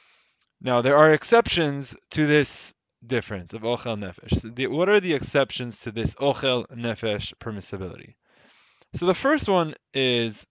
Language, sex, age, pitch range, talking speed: English, male, 20-39, 115-160 Hz, 135 wpm